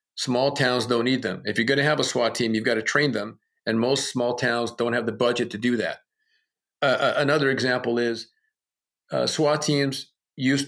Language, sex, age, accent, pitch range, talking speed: English, male, 50-69, American, 110-130 Hz, 210 wpm